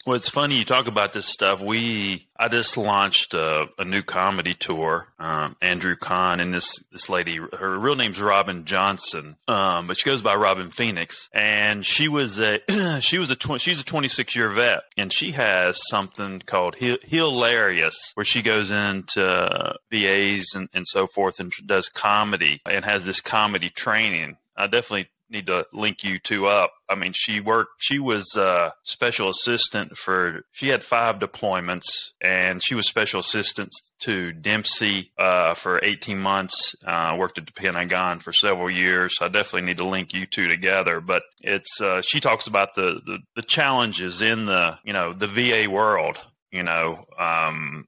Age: 30-49